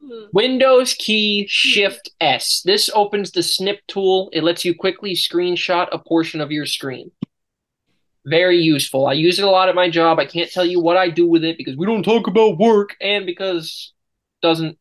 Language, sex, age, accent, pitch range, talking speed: English, male, 20-39, American, 150-190 Hz, 190 wpm